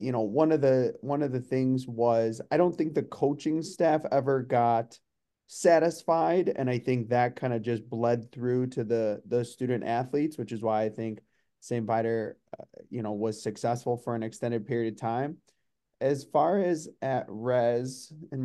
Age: 30-49